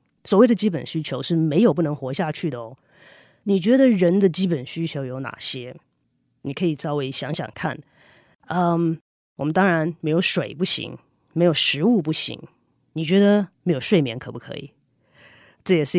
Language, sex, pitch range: Chinese, female, 150-195 Hz